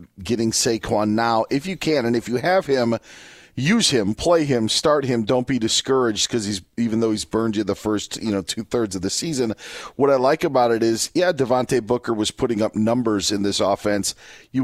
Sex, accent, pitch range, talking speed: male, American, 105-135 Hz, 215 wpm